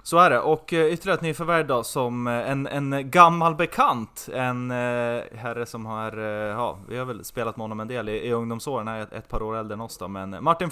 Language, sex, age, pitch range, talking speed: Swedish, male, 20-39, 105-130 Hz, 215 wpm